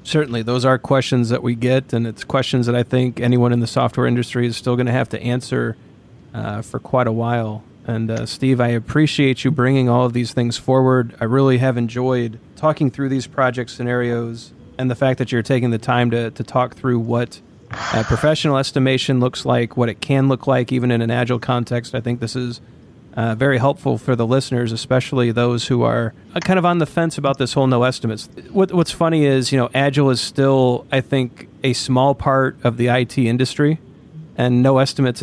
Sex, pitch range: male, 120-135 Hz